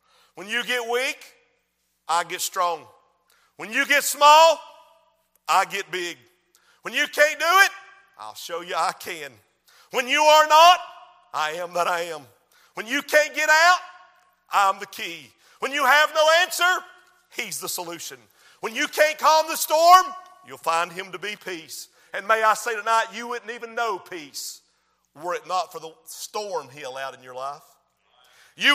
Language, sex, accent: English, male, American